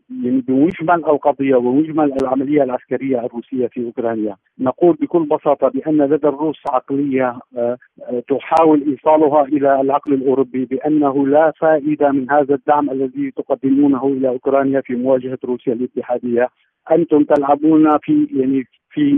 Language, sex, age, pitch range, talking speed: Arabic, male, 50-69, 135-155 Hz, 130 wpm